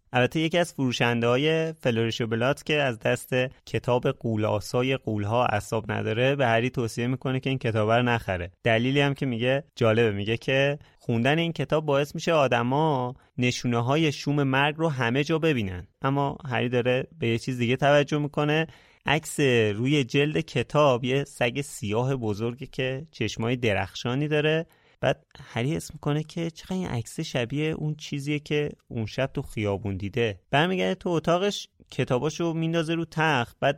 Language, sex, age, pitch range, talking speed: Persian, male, 30-49, 115-145 Hz, 160 wpm